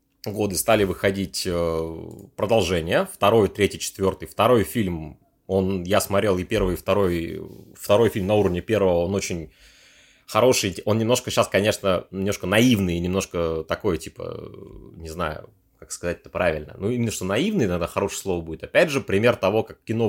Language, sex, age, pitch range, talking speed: Russian, male, 30-49, 90-110 Hz, 160 wpm